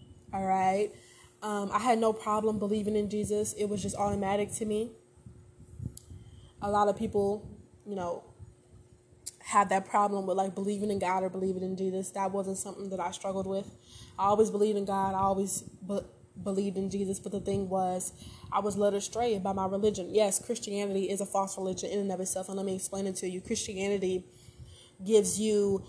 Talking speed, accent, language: 190 wpm, American, English